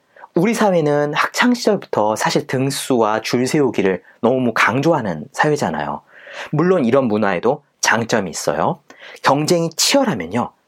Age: 30-49